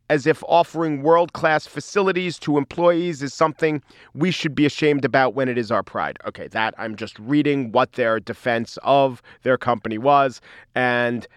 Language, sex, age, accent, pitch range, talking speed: English, male, 40-59, American, 125-190 Hz, 170 wpm